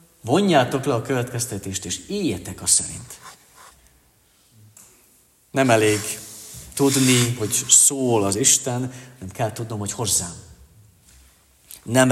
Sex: male